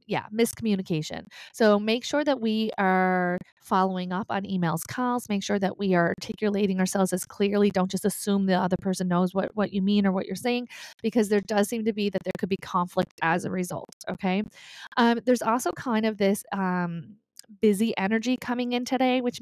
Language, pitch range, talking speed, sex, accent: English, 185-225 Hz, 200 wpm, female, American